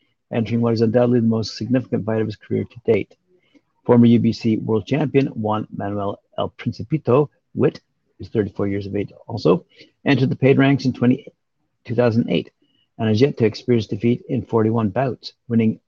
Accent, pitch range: American, 110-130 Hz